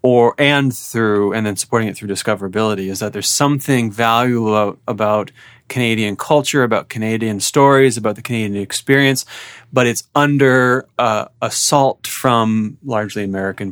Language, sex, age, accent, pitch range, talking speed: English, male, 30-49, American, 100-120 Hz, 145 wpm